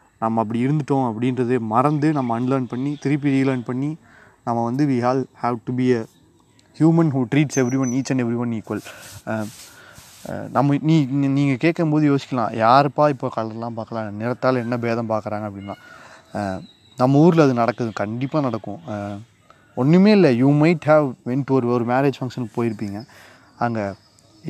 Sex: male